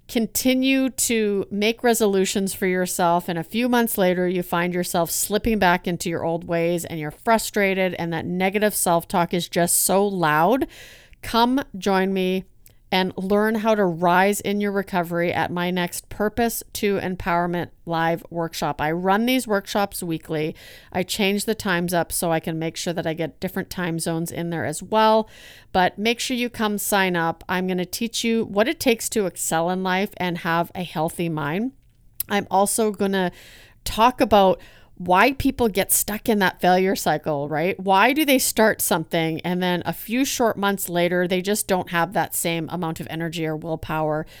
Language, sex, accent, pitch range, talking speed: English, female, American, 170-205 Hz, 185 wpm